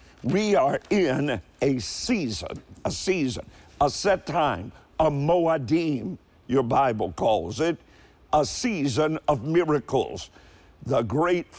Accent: American